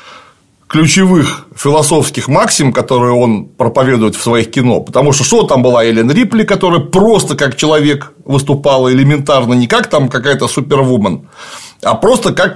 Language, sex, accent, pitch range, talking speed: Russian, male, native, 120-160 Hz, 145 wpm